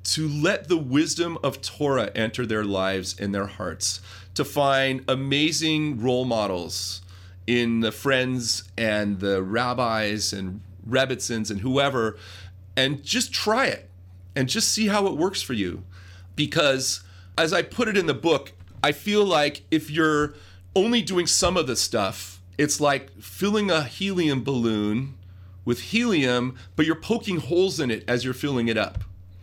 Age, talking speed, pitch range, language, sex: 40-59, 155 wpm, 95-150 Hz, English, male